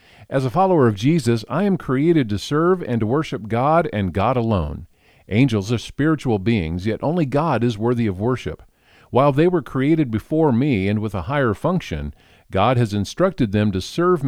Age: 50-69